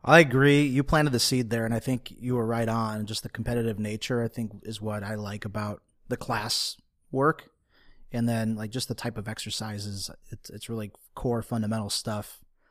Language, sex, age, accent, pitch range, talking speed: English, male, 30-49, American, 105-120 Hz, 200 wpm